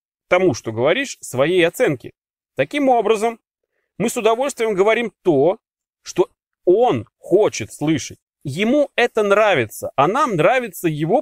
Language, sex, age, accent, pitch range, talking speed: Russian, male, 30-49, native, 145-220 Hz, 125 wpm